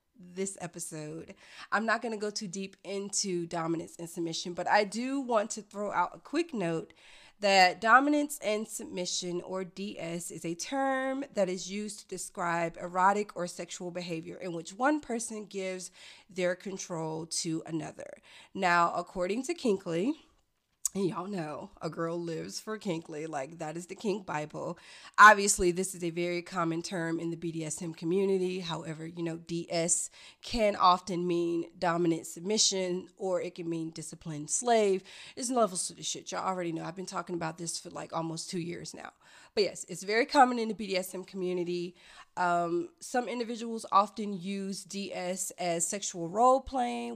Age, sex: 30-49, female